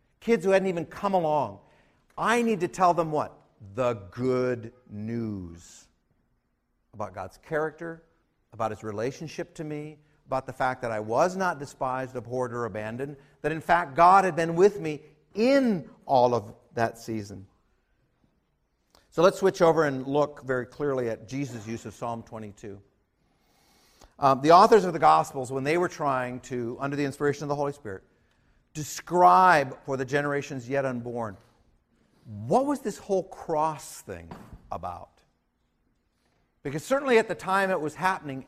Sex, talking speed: male, 155 wpm